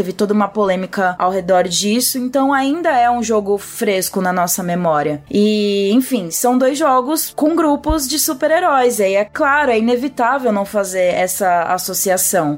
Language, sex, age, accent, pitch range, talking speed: Portuguese, female, 20-39, Brazilian, 210-255 Hz, 160 wpm